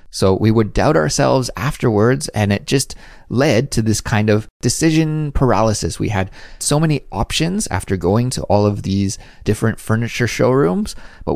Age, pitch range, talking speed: 30-49, 100-135 Hz, 165 wpm